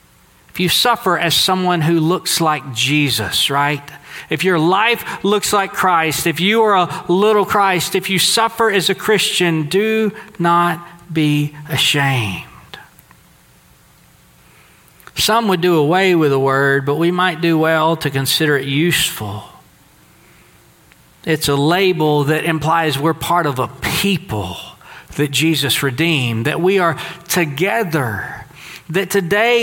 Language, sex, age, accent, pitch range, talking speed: English, male, 40-59, American, 155-190 Hz, 135 wpm